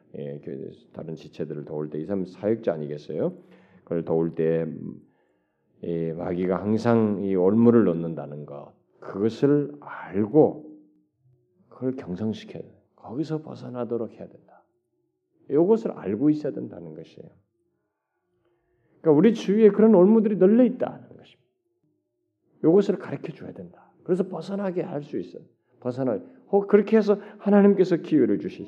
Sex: male